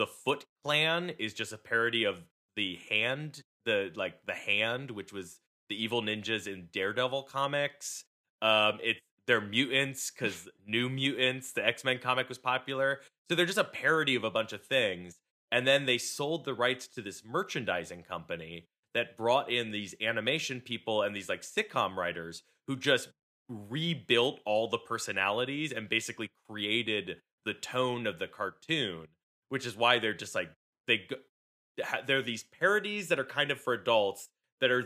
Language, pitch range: English, 110-140 Hz